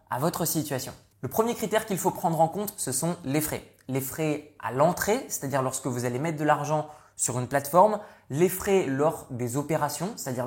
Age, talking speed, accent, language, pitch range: 20-39, 200 wpm, French, French, 130-170 Hz